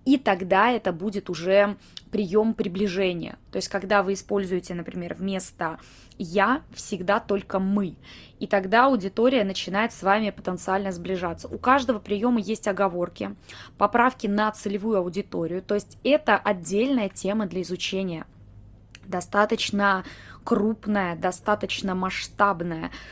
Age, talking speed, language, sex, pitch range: 20-39, 120 wpm, Russian, female, 185-240 Hz